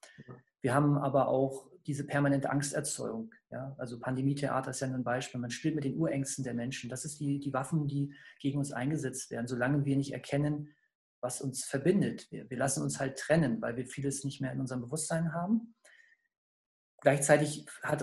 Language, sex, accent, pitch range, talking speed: German, male, German, 135-160 Hz, 185 wpm